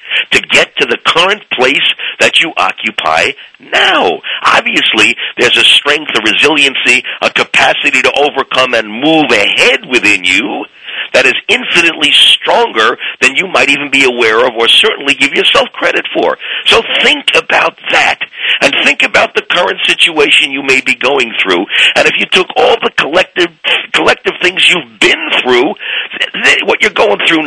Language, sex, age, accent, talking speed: English, male, 50-69, American, 165 wpm